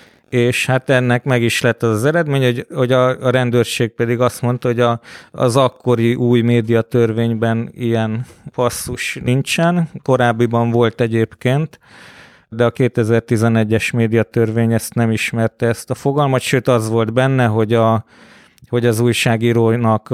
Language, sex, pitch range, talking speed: Hungarian, male, 115-125 Hz, 145 wpm